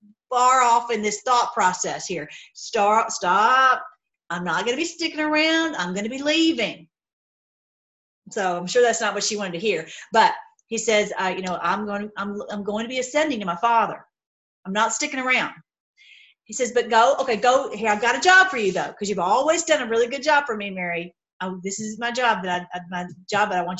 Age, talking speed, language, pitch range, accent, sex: 40-59, 225 wpm, English, 200-260 Hz, American, female